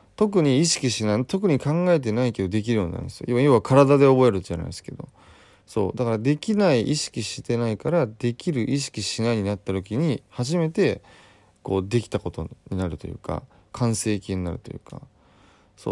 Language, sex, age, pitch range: Japanese, male, 20-39, 95-130 Hz